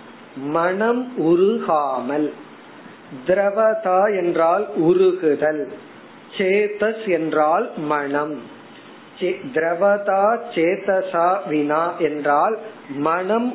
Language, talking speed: Tamil, 50 wpm